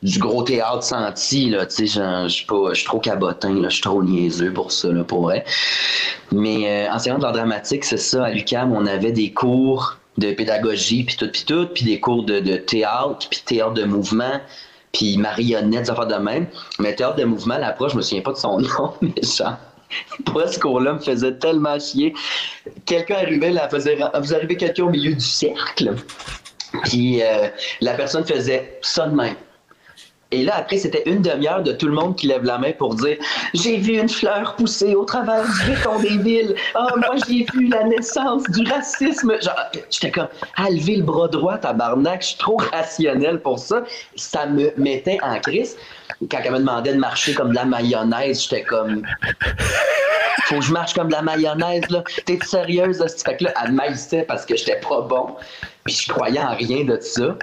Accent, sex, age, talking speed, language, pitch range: Canadian, male, 30-49, 210 wpm, English, 120-195 Hz